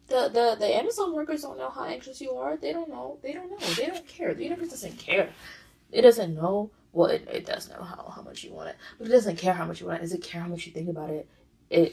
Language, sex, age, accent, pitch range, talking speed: English, female, 20-39, American, 170-230 Hz, 280 wpm